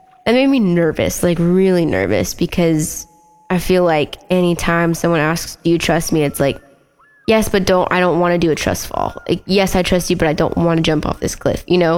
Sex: female